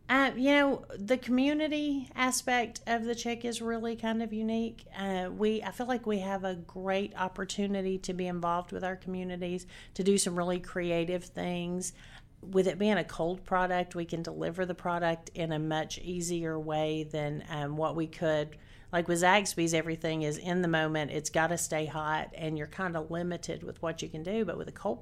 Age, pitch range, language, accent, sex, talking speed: 40-59, 155-185 Hz, English, American, female, 200 wpm